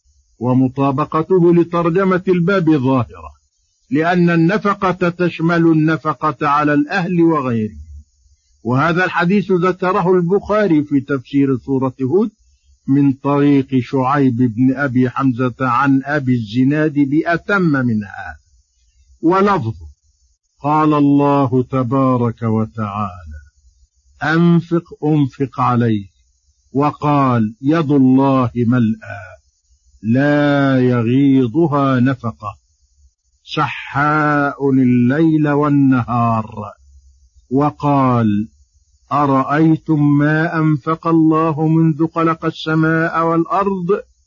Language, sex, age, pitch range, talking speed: Arabic, male, 50-69, 110-160 Hz, 75 wpm